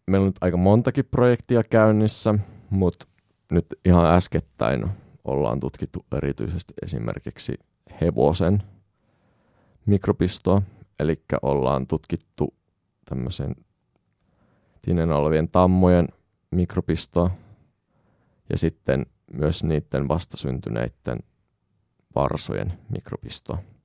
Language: Finnish